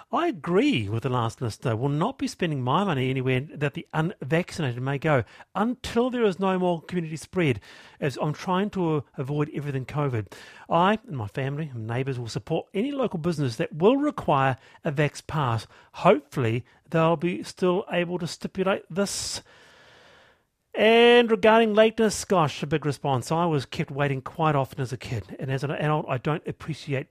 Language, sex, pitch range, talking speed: English, male, 130-175 Hz, 175 wpm